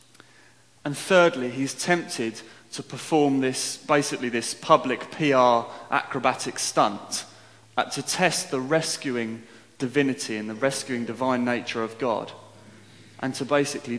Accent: British